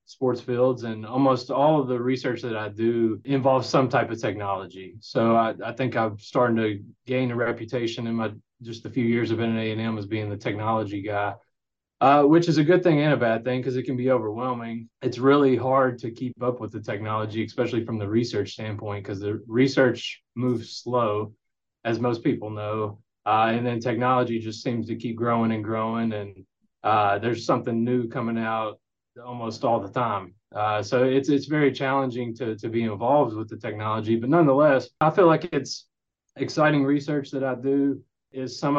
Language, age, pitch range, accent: English, 30-49, 110-130 Hz, American